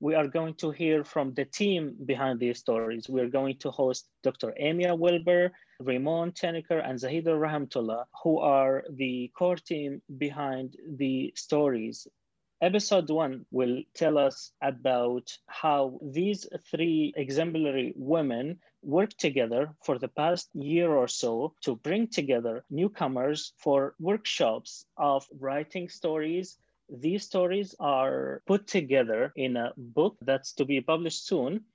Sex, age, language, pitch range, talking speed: male, 30-49, English, 130-170 Hz, 140 wpm